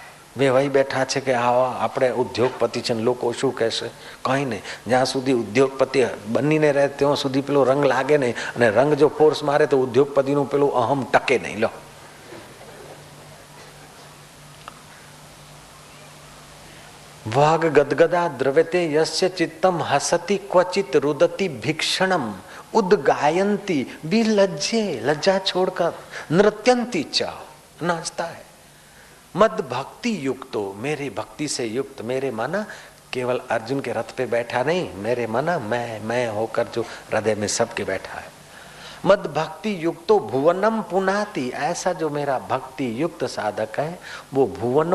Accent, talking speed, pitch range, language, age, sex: native, 75 wpm, 130-180 Hz, Hindi, 40-59, male